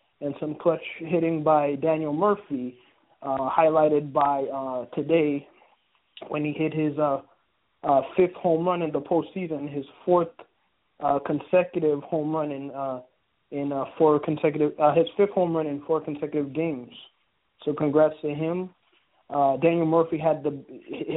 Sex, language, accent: male, English, American